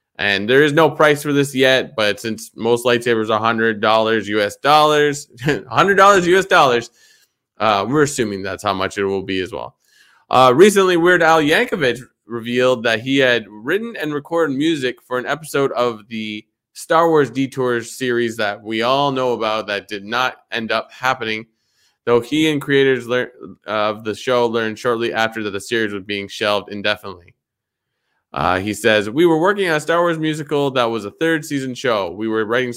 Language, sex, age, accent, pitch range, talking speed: English, male, 20-39, American, 110-140 Hz, 190 wpm